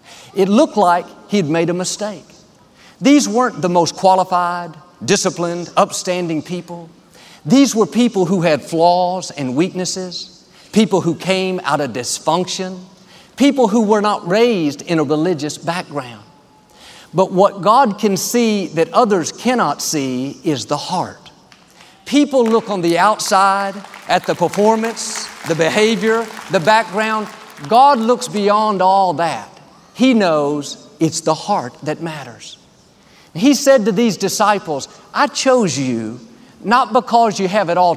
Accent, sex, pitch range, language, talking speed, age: American, male, 165-215 Hz, English, 140 wpm, 50-69